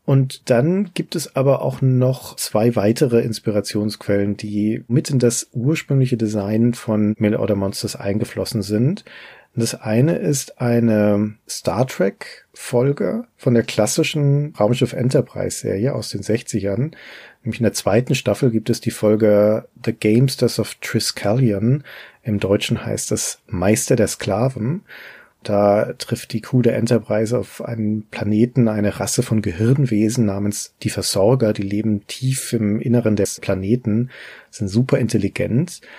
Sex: male